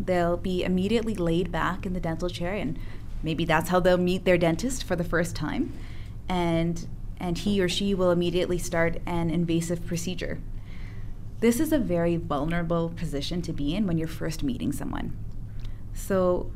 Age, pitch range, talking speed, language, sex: 20-39, 150-195 Hz, 170 wpm, English, female